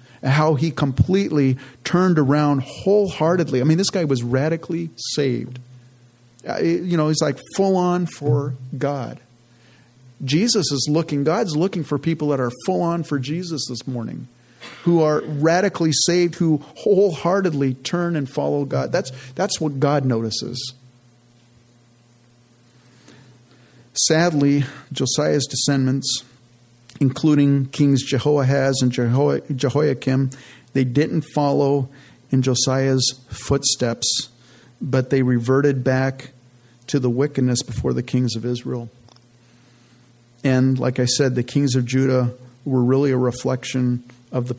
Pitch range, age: 120-145 Hz, 50-69